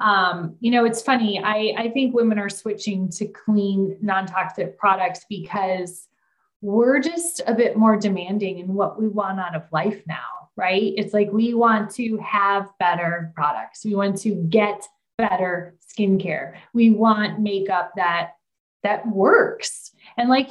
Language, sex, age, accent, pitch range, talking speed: English, female, 20-39, American, 195-255 Hz, 155 wpm